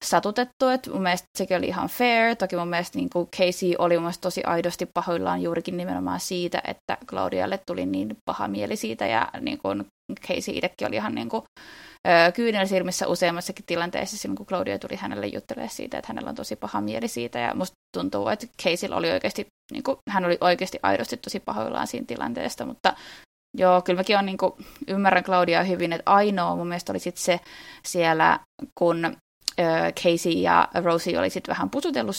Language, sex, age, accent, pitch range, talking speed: Finnish, female, 20-39, native, 175-215 Hz, 170 wpm